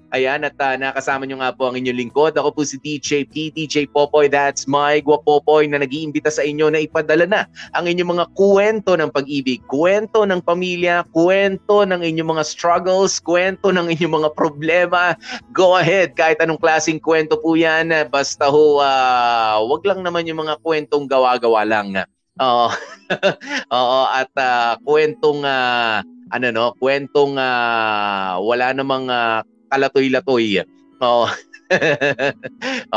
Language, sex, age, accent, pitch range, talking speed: Filipino, male, 20-39, native, 130-160 Hz, 155 wpm